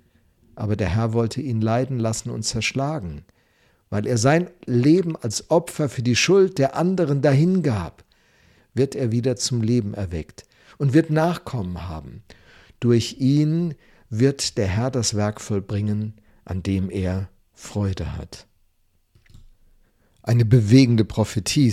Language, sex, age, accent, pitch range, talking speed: German, male, 50-69, German, 105-135 Hz, 130 wpm